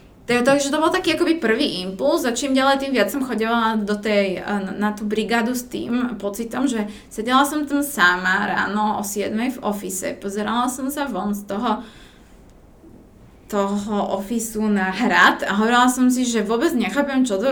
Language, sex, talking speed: Slovak, female, 180 wpm